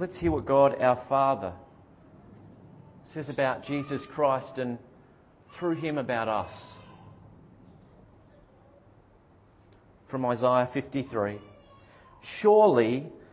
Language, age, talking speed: English, 40-59, 85 wpm